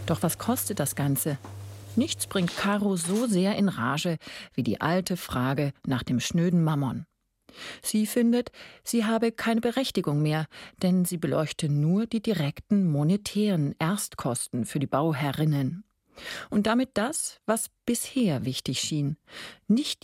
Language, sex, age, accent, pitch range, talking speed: German, female, 40-59, German, 145-205 Hz, 140 wpm